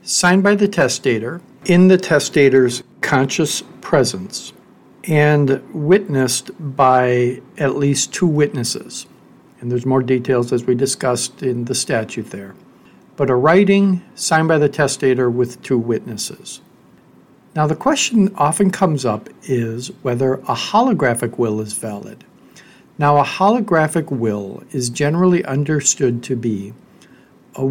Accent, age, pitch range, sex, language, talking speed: American, 60-79, 125-160 Hz, male, English, 130 wpm